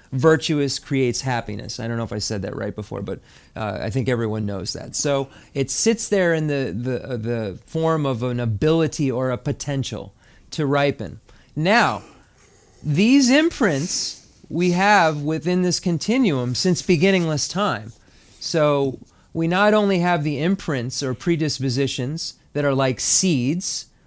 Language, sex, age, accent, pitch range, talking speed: English, male, 30-49, American, 115-155 Hz, 150 wpm